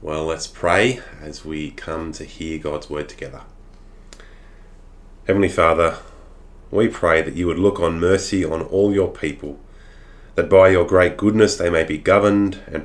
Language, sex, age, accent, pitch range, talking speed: English, male, 20-39, Australian, 80-95 Hz, 165 wpm